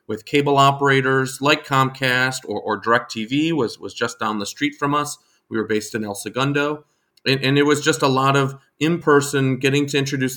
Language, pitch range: English, 115-140 Hz